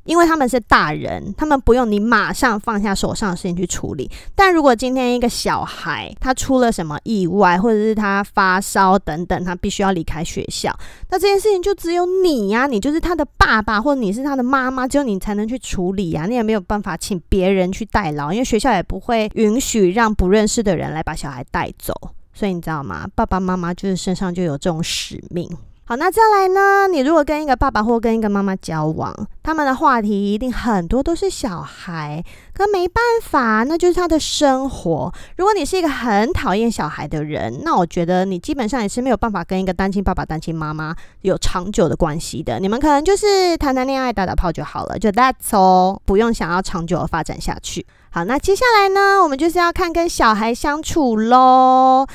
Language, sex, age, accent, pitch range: Chinese, female, 20-39, American, 185-270 Hz